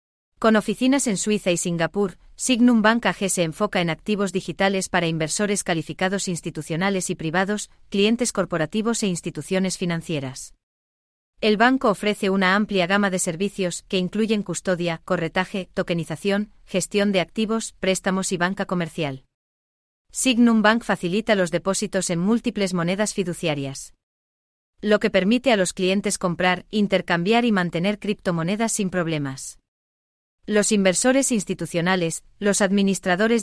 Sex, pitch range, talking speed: female, 170-210 Hz, 130 wpm